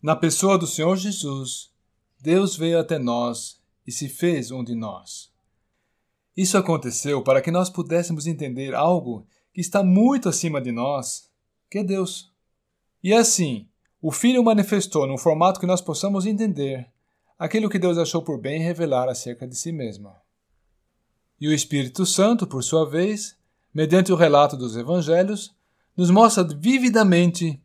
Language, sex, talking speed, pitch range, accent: Portuguese, male, 150 wpm, 125-185 Hz, Brazilian